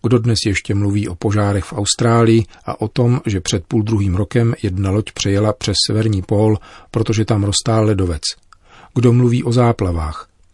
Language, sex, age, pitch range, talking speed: Czech, male, 40-59, 100-115 Hz, 170 wpm